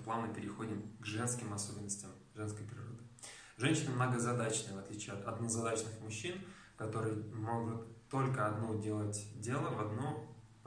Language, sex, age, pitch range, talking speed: Russian, male, 20-39, 105-120 Hz, 125 wpm